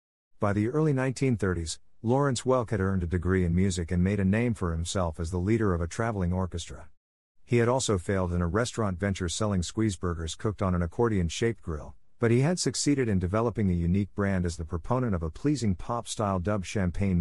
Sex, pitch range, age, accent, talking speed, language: male, 85-110 Hz, 50-69, American, 205 wpm, English